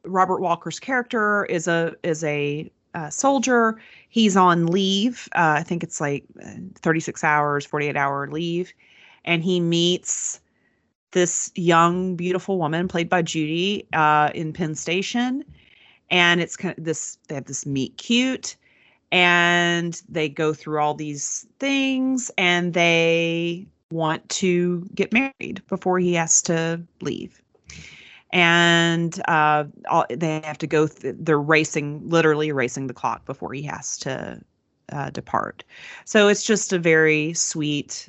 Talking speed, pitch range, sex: 140 wpm, 150-185 Hz, female